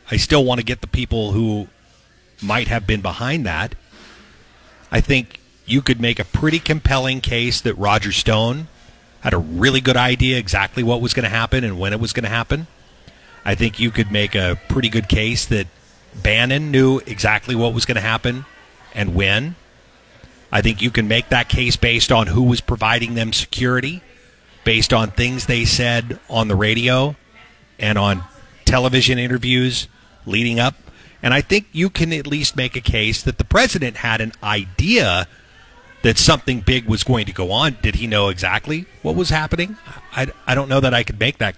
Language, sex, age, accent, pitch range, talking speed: English, male, 40-59, American, 105-130 Hz, 190 wpm